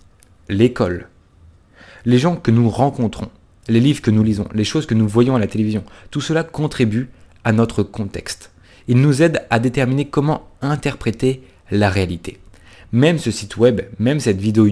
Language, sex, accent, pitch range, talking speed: French, male, French, 100-130 Hz, 165 wpm